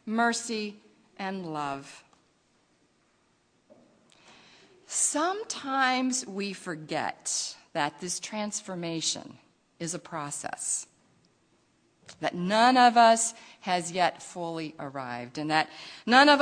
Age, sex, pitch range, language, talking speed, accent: 50-69, female, 170-255 Hz, English, 90 wpm, American